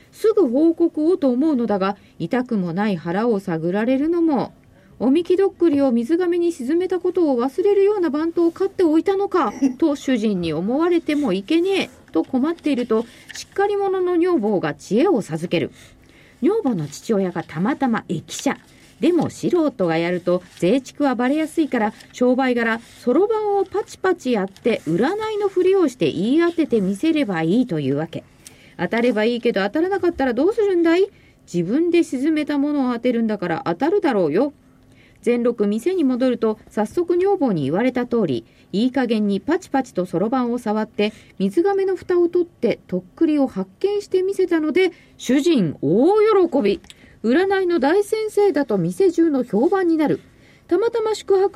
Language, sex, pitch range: Japanese, female, 220-355 Hz